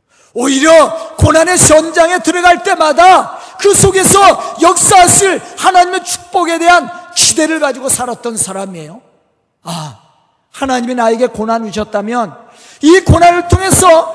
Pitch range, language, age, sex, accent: 235-345 Hz, Korean, 40-59, male, native